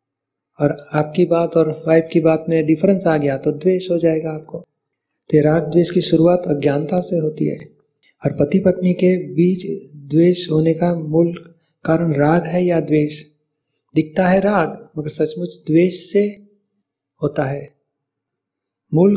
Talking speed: 150 wpm